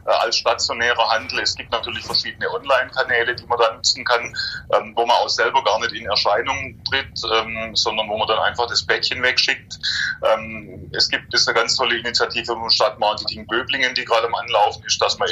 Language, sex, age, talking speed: German, male, 30-49, 200 wpm